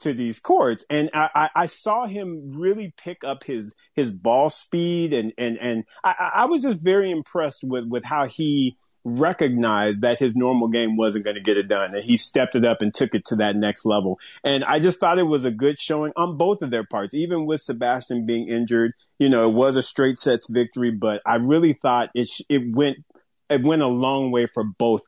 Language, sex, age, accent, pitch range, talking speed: English, male, 30-49, American, 115-145 Hz, 225 wpm